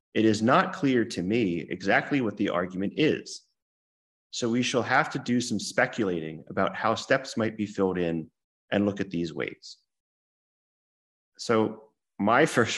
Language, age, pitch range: English, 30-49, 90-115 Hz